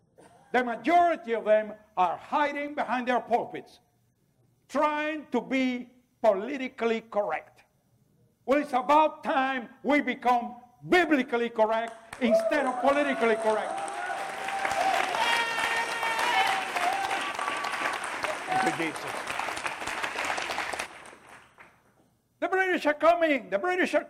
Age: 60-79